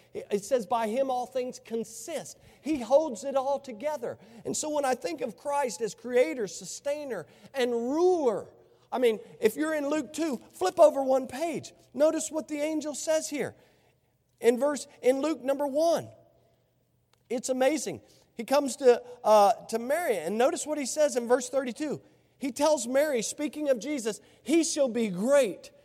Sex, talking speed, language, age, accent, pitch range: male, 170 wpm, English, 40-59, American, 230-295 Hz